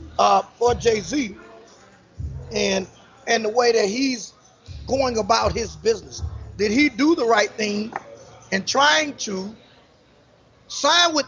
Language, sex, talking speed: English, male, 135 wpm